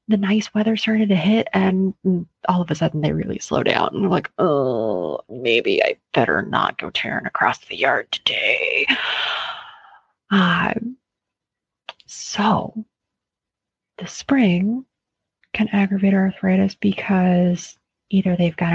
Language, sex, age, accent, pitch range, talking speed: English, female, 30-49, American, 175-225 Hz, 130 wpm